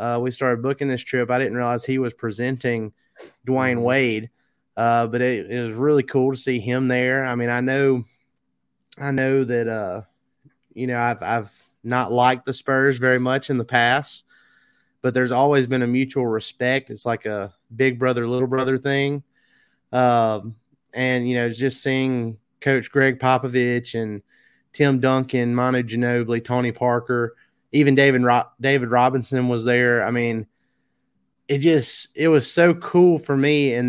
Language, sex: English, male